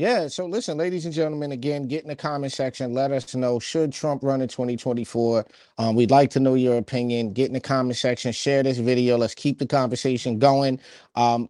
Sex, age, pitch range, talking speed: male, 30-49, 125-150 Hz, 215 wpm